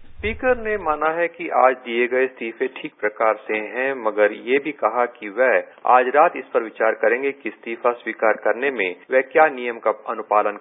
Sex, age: male, 40-59